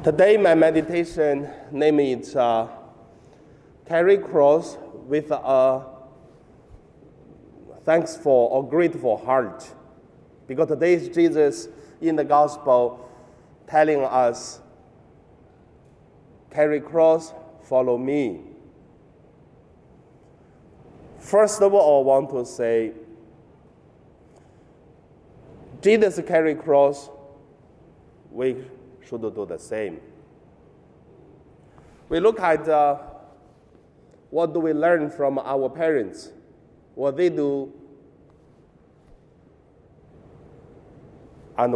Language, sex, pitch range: Chinese, male, 135-160 Hz